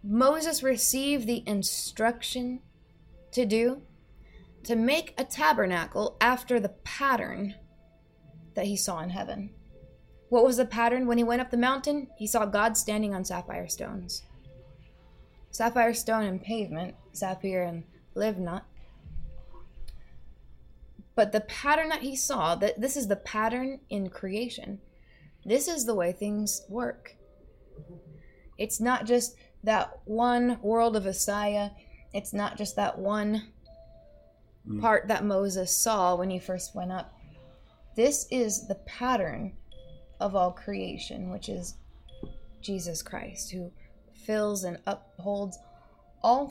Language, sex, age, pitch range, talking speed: English, female, 20-39, 180-235 Hz, 130 wpm